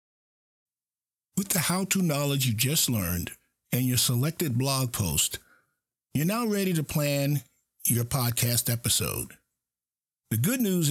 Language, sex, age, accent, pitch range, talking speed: English, male, 50-69, American, 115-160 Hz, 125 wpm